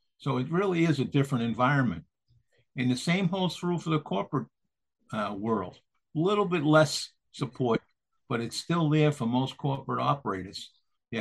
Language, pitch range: English, 120-150 Hz